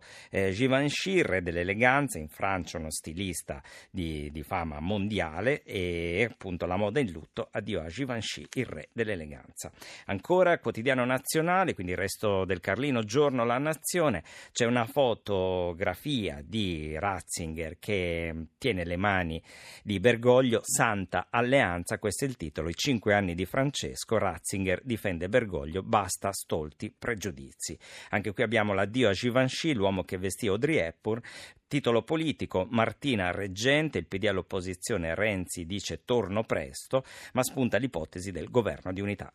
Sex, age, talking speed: male, 50-69, 140 wpm